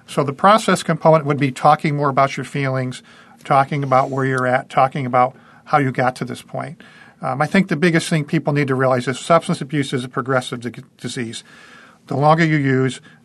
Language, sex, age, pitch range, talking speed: English, male, 50-69, 135-165 Hz, 210 wpm